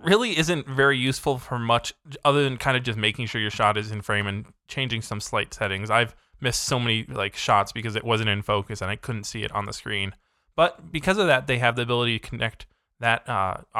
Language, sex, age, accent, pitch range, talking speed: English, male, 20-39, American, 110-140 Hz, 235 wpm